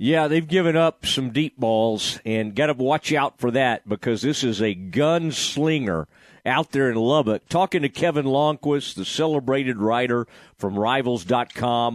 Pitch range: 115-155 Hz